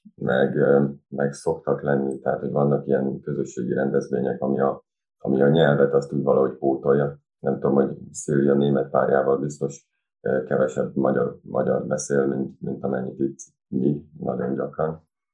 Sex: male